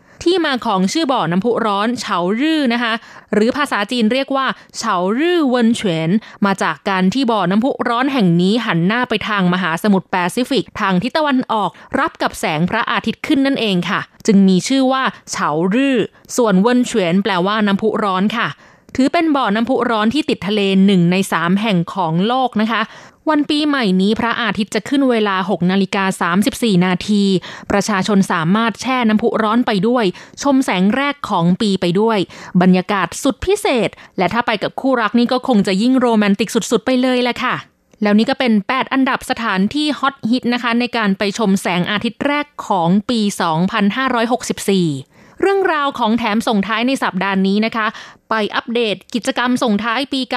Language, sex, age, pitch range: Thai, female, 20-39, 195-250 Hz